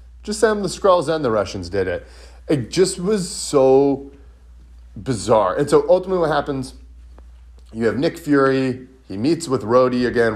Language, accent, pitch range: English, American, 95-155 Hz